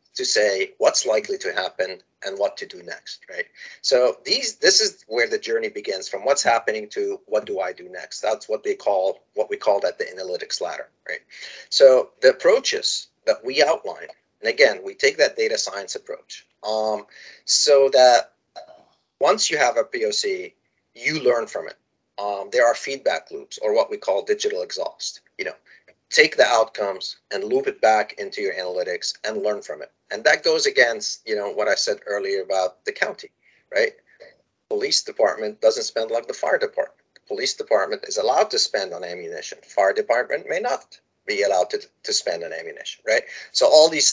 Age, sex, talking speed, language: 30-49, male, 190 wpm, English